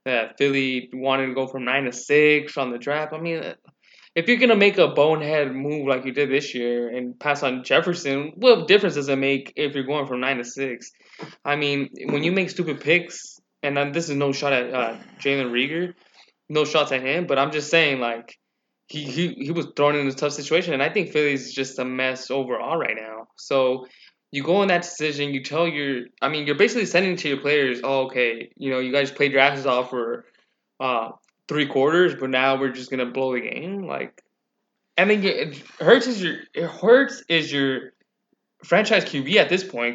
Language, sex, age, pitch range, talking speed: English, male, 20-39, 130-165 Hz, 215 wpm